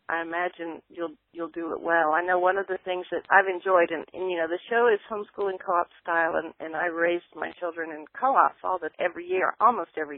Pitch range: 165-205 Hz